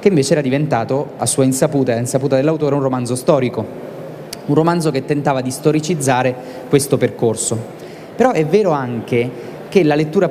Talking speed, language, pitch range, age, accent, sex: 170 wpm, Italian, 130-160 Hz, 20-39, native, male